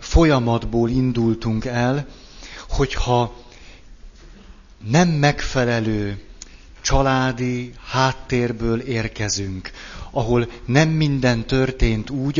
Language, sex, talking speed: Hungarian, male, 70 wpm